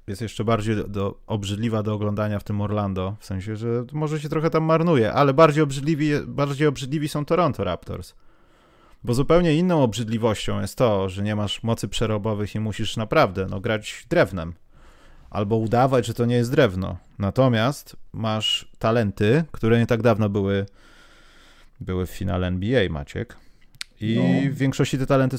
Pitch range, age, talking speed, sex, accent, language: 100-140 Hz, 30-49, 155 wpm, male, native, Polish